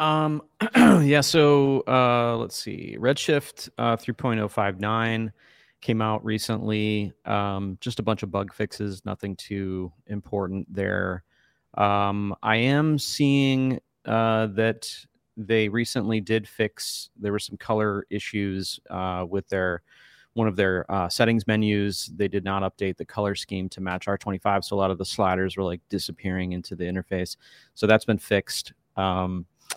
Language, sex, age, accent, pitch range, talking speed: English, male, 30-49, American, 95-125 Hz, 150 wpm